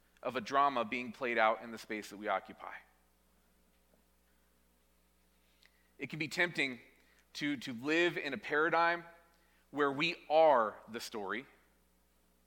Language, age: English, 30-49